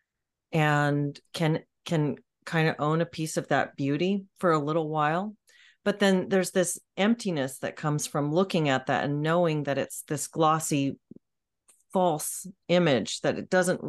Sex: female